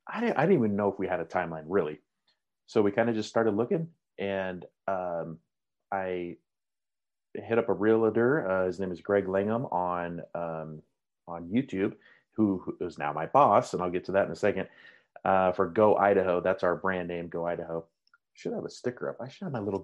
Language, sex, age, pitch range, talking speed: English, male, 30-49, 90-110 Hz, 215 wpm